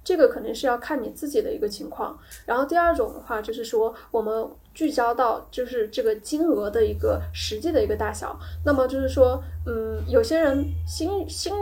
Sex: female